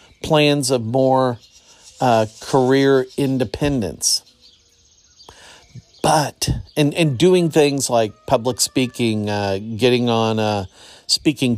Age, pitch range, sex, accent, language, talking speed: 50-69, 95-140 Hz, male, American, English, 100 wpm